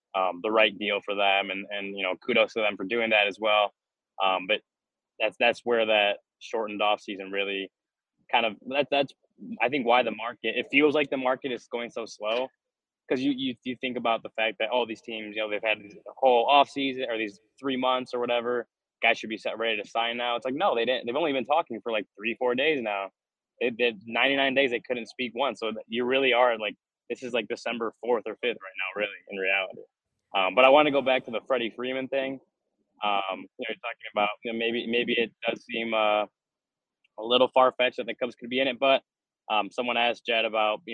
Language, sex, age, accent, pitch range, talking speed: English, male, 20-39, American, 105-125 Hz, 245 wpm